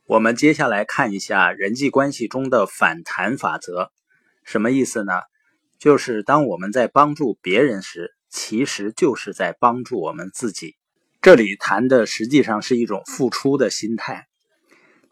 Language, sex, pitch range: Chinese, male, 110-150 Hz